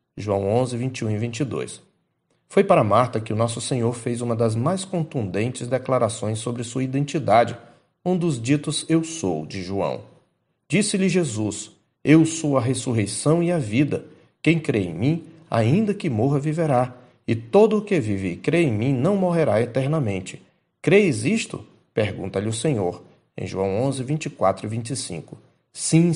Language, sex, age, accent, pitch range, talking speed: Portuguese, male, 40-59, Brazilian, 115-155 Hz, 160 wpm